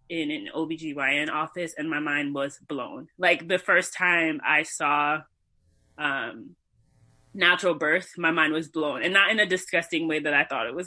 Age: 20-39